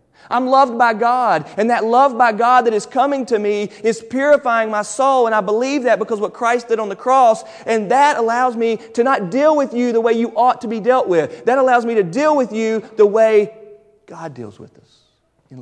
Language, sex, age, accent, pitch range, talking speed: English, male, 30-49, American, 210-250 Hz, 235 wpm